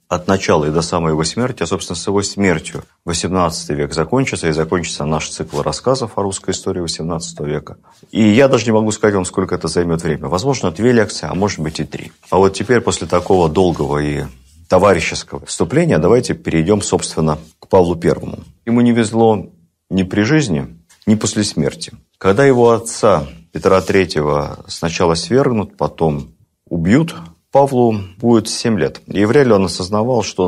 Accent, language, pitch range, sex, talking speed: native, Russian, 80-110 Hz, male, 170 wpm